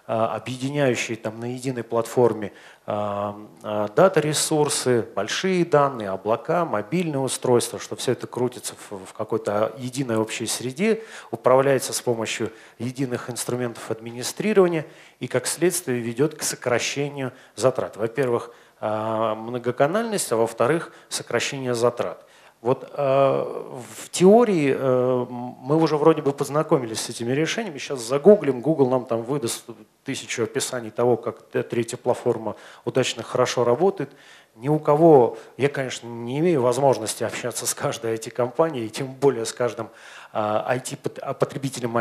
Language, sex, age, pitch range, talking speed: Russian, male, 30-49, 115-145 Hz, 120 wpm